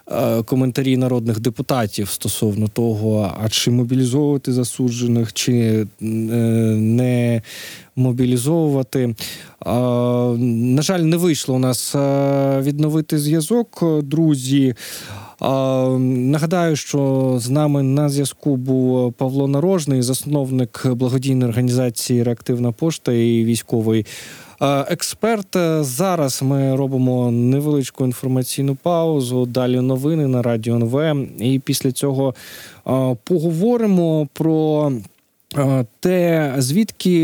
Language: Ukrainian